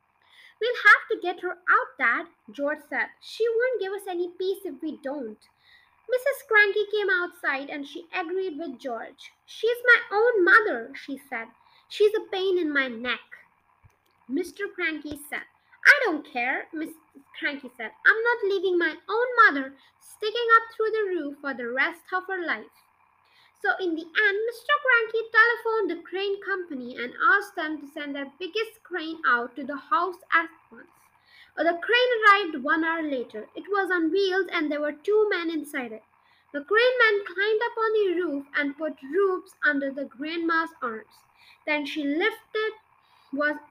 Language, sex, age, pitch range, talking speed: English, female, 20-39, 295-430 Hz, 170 wpm